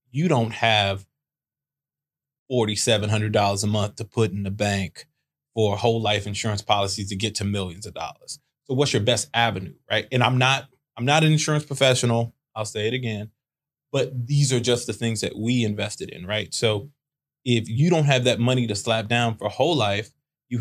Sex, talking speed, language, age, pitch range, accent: male, 200 wpm, English, 20-39, 105-130 Hz, American